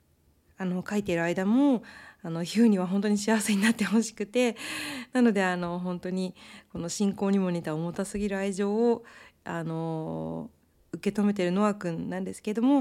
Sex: female